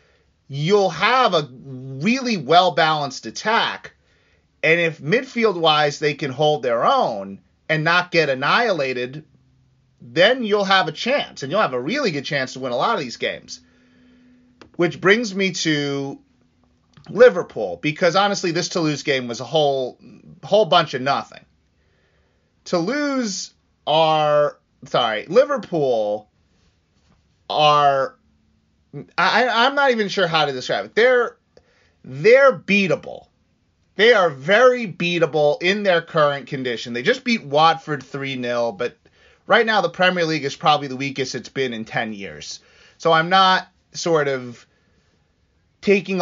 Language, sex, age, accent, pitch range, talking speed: English, male, 30-49, American, 130-190 Hz, 135 wpm